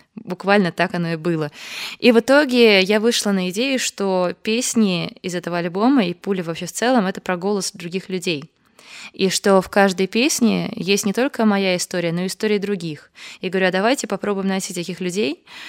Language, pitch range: Russian, 180-225 Hz